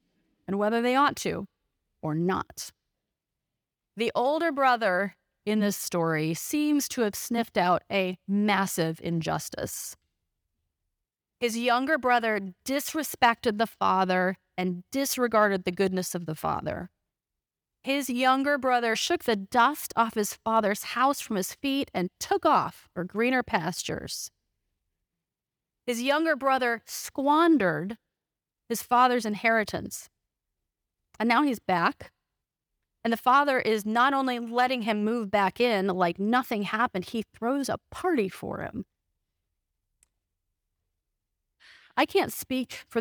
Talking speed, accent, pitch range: 125 wpm, American, 180-245 Hz